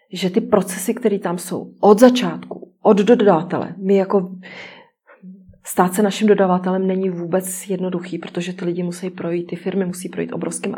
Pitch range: 170-190 Hz